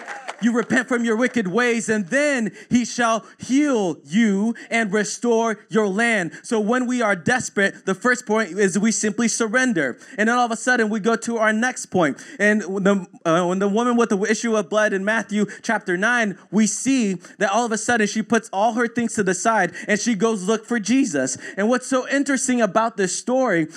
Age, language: 20-39, English